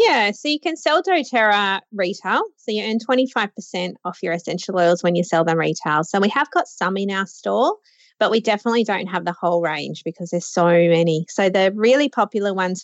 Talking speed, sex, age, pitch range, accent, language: 210 wpm, female, 20-39, 175-230 Hz, Australian, English